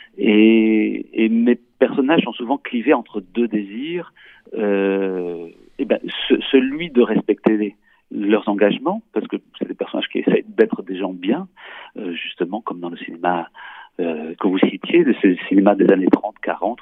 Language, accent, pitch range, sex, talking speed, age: French, French, 105-150 Hz, male, 170 wpm, 40-59